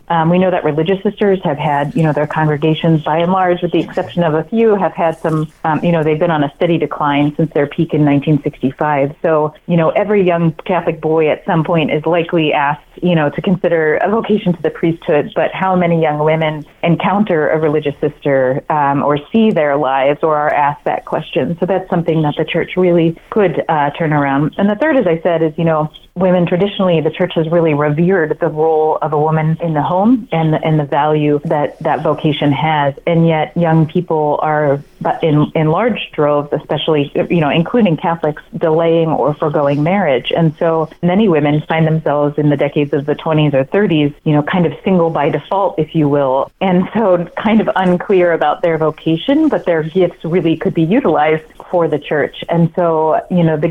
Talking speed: 210 wpm